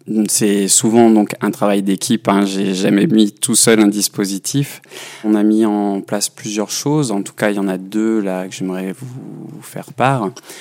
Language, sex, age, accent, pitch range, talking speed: French, male, 20-39, French, 100-120 Hz, 200 wpm